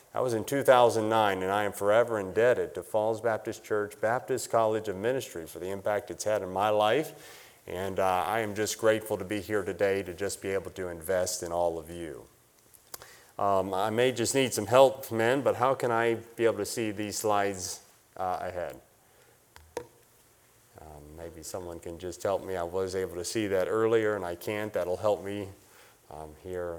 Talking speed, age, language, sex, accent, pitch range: 195 wpm, 30-49, English, male, American, 100-125 Hz